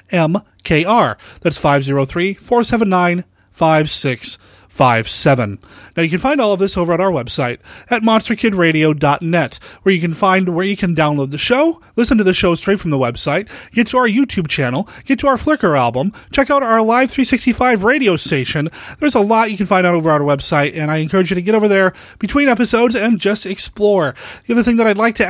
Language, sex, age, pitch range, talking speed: English, male, 30-49, 160-235 Hz, 195 wpm